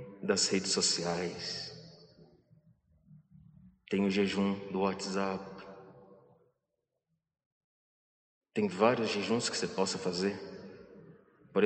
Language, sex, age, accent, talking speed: Portuguese, male, 40-59, Brazilian, 80 wpm